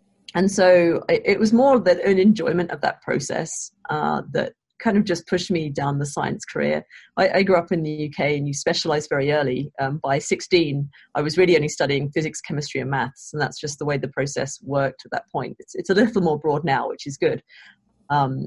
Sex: female